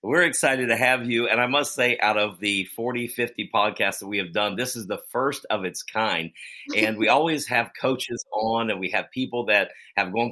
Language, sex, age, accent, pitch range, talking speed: English, male, 50-69, American, 100-120 Hz, 225 wpm